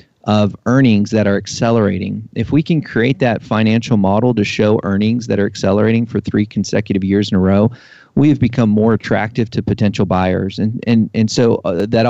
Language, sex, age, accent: English, male, 40-59, American